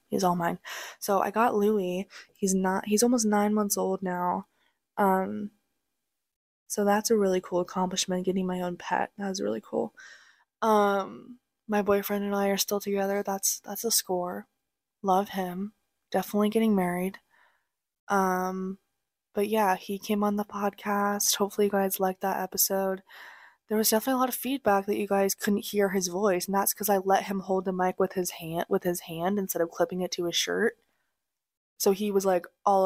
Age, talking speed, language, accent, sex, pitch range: 20-39, 185 wpm, English, American, female, 185-210 Hz